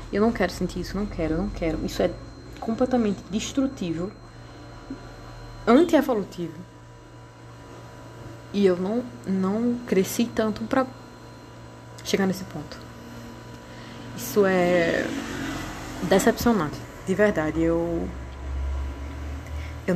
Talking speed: 95 wpm